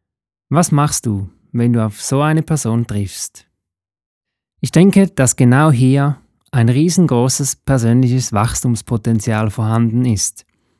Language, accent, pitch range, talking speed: German, German, 110-150 Hz, 115 wpm